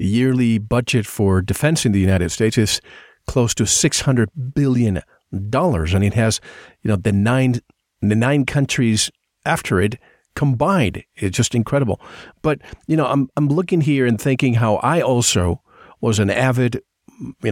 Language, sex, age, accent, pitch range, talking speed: English, male, 50-69, American, 110-140 Hz, 160 wpm